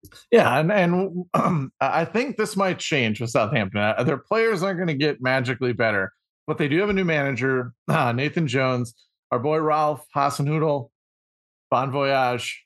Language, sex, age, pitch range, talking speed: English, male, 30-49, 125-155 Hz, 170 wpm